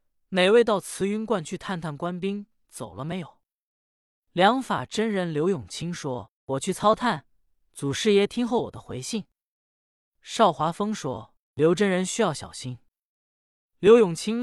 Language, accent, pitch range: Chinese, native, 140-210 Hz